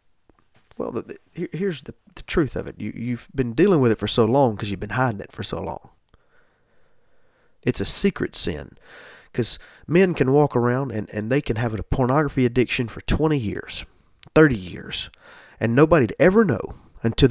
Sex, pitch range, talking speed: male, 105-130 Hz, 185 wpm